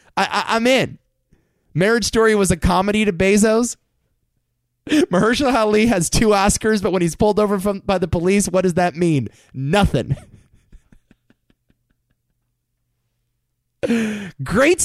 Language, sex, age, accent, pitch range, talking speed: English, male, 20-39, American, 175-245 Hz, 120 wpm